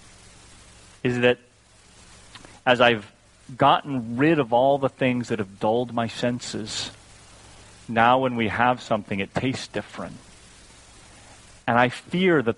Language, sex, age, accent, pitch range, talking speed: English, male, 30-49, American, 100-120 Hz, 130 wpm